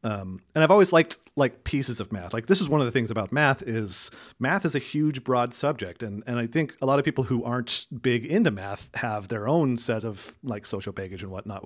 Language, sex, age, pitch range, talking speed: English, male, 40-59, 105-130 Hz, 245 wpm